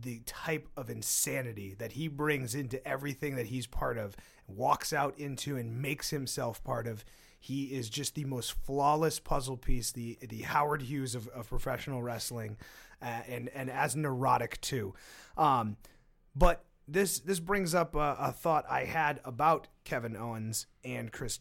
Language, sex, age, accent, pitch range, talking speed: English, male, 30-49, American, 120-145 Hz, 165 wpm